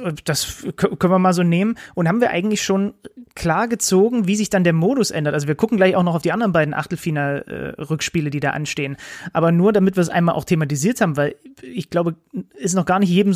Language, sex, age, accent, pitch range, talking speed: German, male, 30-49, German, 165-210 Hz, 225 wpm